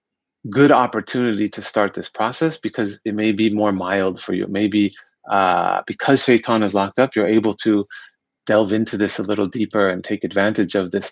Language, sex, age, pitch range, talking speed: English, male, 30-49, 100-115 Hz, 190 wpm